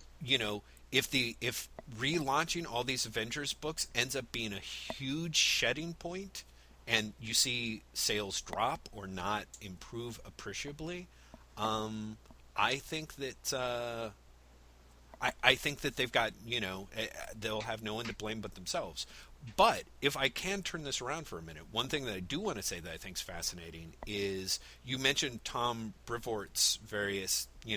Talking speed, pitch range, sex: 165 wpm, 95-130 Hz, male